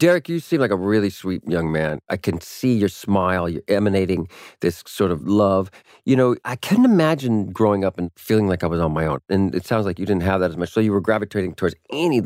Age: 40-59